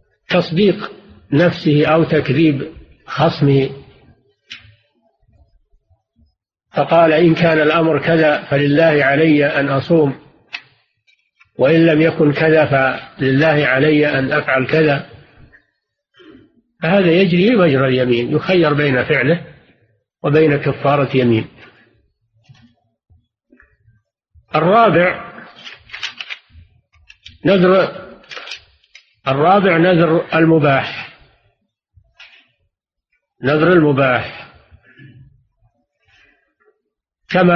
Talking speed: 65 wpm